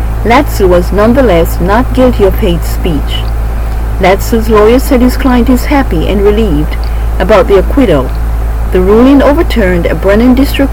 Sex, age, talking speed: female, 50-69, 145 wpm